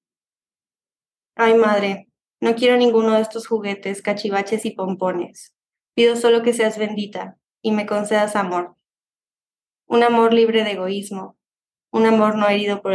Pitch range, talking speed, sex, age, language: 195-225 Hz, 140 wpm, female, 20-39, English